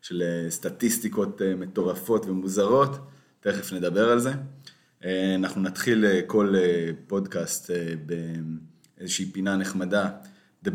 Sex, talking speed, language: male, 90 wpm, Hebrew